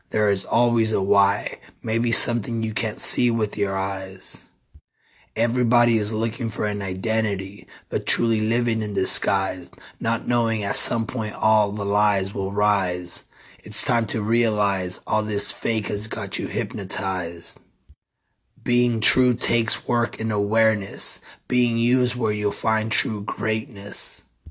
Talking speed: 140 wpm